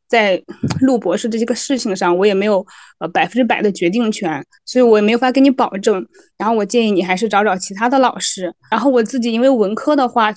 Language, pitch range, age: Chinese, 205-255 Hz, 20-39